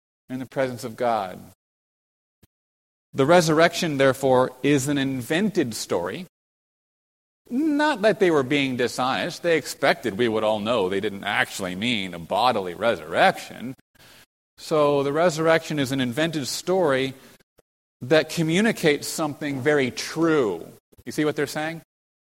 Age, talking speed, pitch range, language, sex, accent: 30-49, 130 wpm, 115-155 Hz, English, male, American